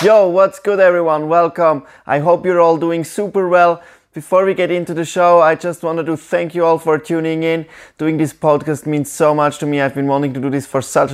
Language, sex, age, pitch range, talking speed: English, male, 20-39, 115-155 Hz, 235 wpm